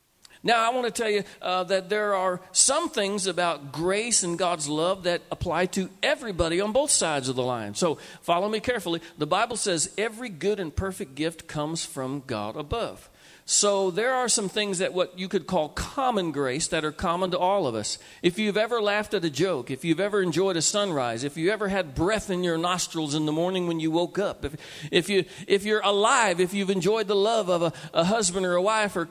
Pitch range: 170-220 Hz